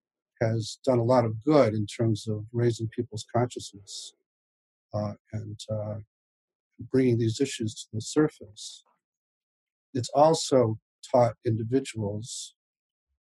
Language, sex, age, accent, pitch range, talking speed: English, male, 50-69, American, 105-130 Hz, 115 wpm